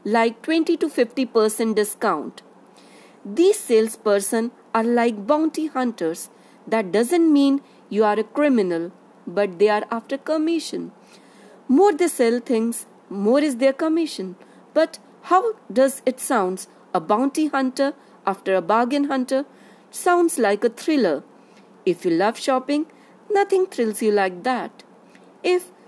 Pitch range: 215-295 Hz